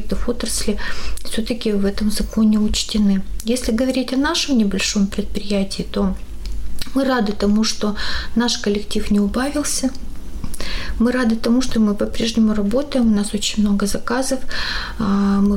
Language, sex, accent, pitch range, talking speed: Russian, female, native, 210-235 Hz, 135 wpm